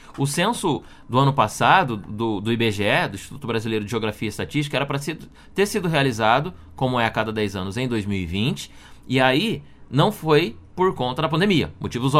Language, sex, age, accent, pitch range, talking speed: Portuguese, male, 20-39, Brazilian, 120-155 Hz, 180 wpm